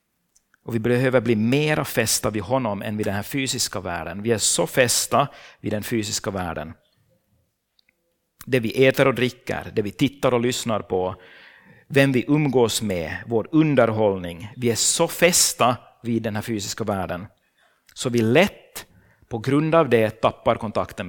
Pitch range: 105-140 Hz